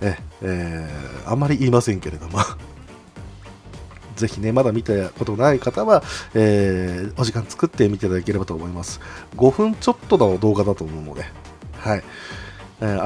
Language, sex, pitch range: Japanese, male, 95-125 Hz